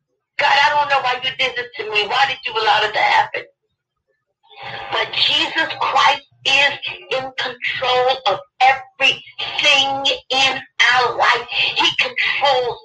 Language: English